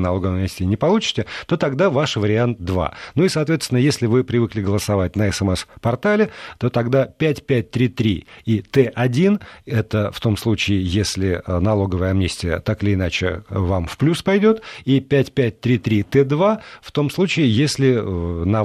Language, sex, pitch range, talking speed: Russian, male, 100-135 Hz, 150 wpm